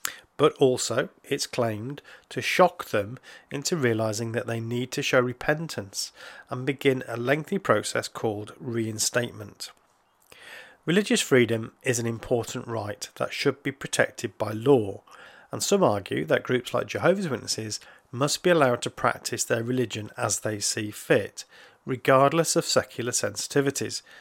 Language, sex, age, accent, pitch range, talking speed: English, male, 40-59, British, 115-145 Hz, 140 wpm